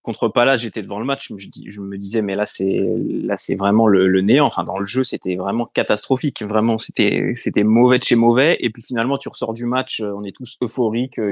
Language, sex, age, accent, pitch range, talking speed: French, male, 20-39, French, 110-140 Hz, 250 wpm